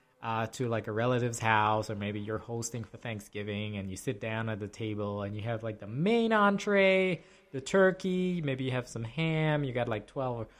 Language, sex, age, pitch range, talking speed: English, male, 20-39, 110-155 Hz, 210 wpm